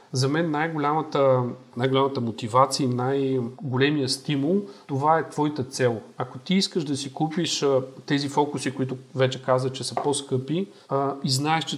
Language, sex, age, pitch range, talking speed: Bulgarian, male, 40-59, 135-175 Hz, 160 wpm